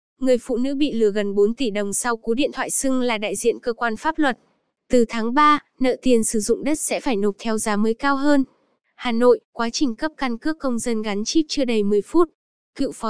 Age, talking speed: 10-29, 245 wpm